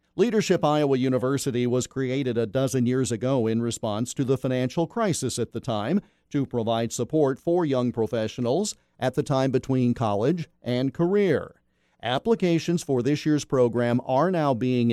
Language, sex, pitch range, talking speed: English, male, 120-165 Hz, 155 wpm